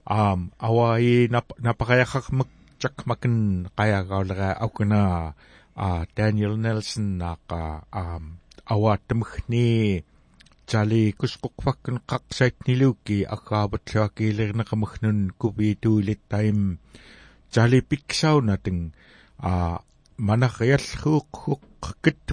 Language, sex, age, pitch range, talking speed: English, male, 60-79, 95-120 Hz, 75 wpm